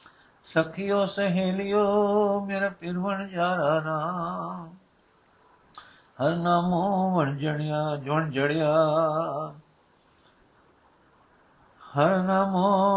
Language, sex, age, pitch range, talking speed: Punjabi, male, 60-79, 145-180 Hz, 65 wpm